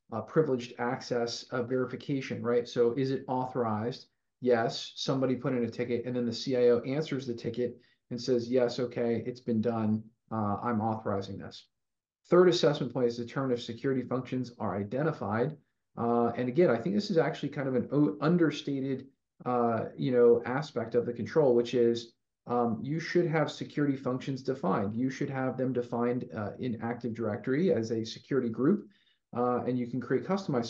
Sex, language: male, English